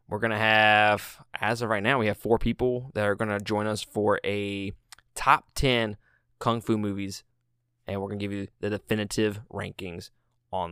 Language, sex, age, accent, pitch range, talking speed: English, male, 20-39, American, 105-120 Hz, 195 wpm